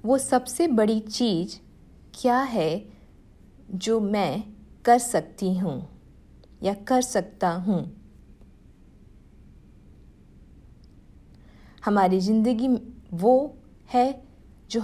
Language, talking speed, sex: English, 80 wpm, female